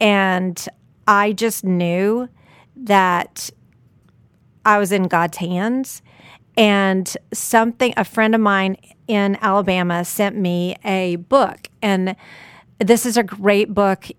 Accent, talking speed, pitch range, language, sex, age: American, 120 wpm, 190-220 Hz, English, female, 40-59